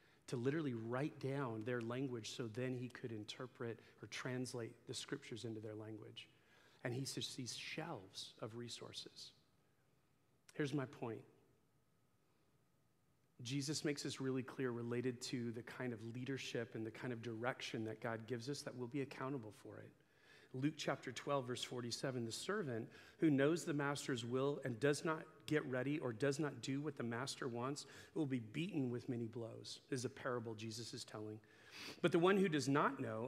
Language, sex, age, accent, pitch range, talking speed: English, male, 40-59, American, 120-145 Hz, 175 wpm